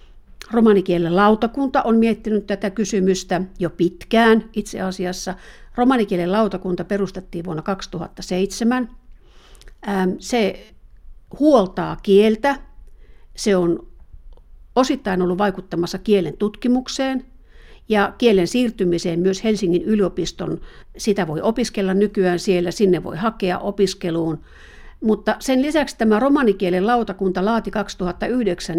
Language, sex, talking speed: Finnish, female, 100 wpm